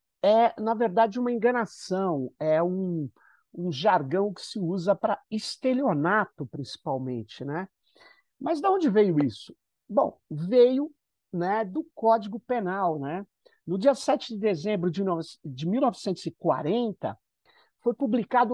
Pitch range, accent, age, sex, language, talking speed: 170-235 Hz, Brazilian, 50-69, male, Portuguese, 125 wpm